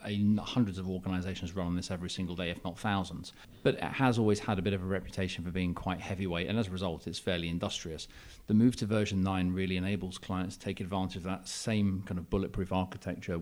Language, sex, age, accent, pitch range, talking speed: English, male, 30-49, British, 85-100 Hz, 235 wpm